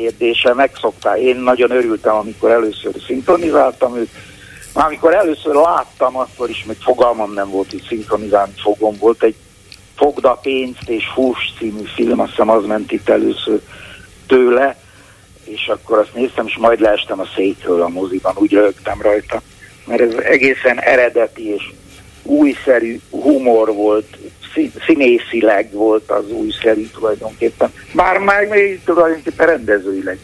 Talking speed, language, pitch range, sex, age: 140 wpm, Hungarian, 105-150 Hz, male, 60-79